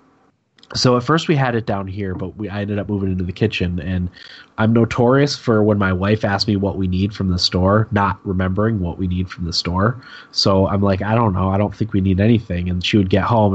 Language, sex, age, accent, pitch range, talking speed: English, male, 20-39, American, 90-105 Hz, 255 wpm